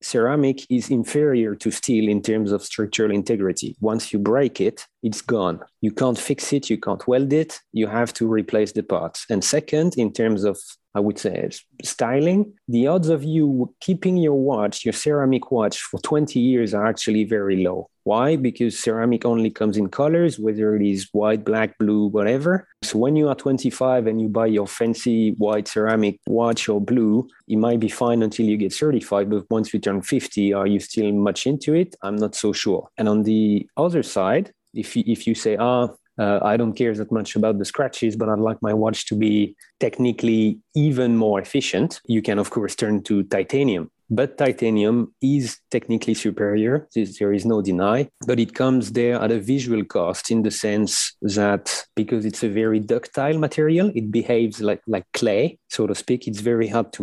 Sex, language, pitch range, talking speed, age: male, English, 105-125 Hz, 195 wpm, 30-49